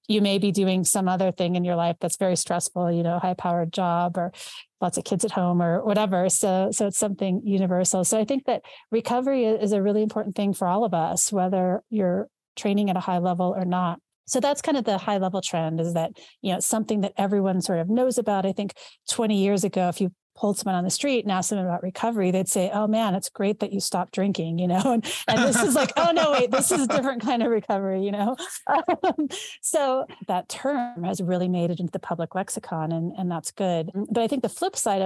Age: 30-49